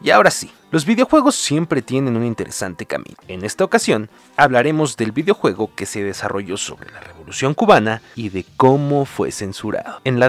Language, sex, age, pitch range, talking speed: Spanish, male, 30-49, 105-155 Hz, 175 wpm